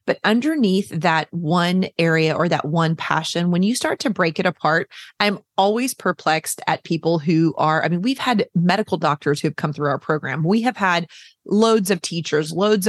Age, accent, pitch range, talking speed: 30-49, American, 165-215 Hz, 190 wpm